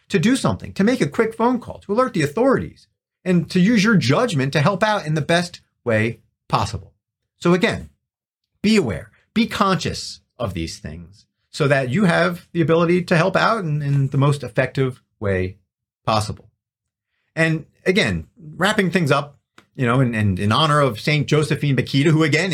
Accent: American